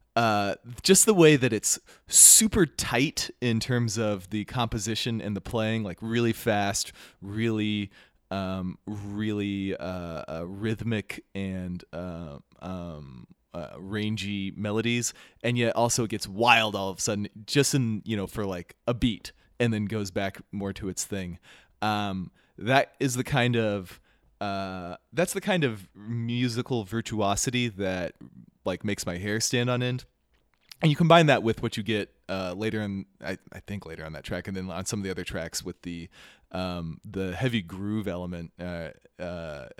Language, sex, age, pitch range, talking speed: English, male, 20-39, 95-115 Hz, 170 wpm